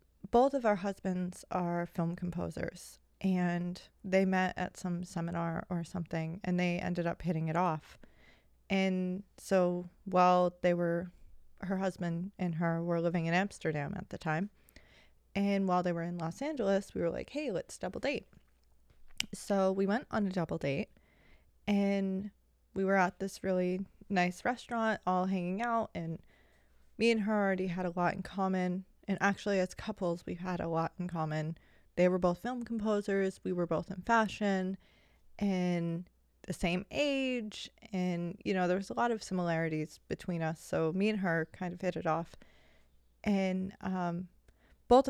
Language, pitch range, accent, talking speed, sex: English, 175-200 Hz, American, 170 wpm, female